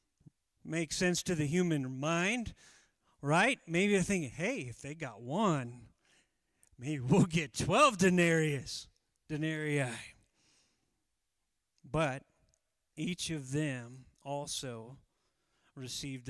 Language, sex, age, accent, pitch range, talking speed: English, male, 40-59, American, 140-190 Hz, 100 wpm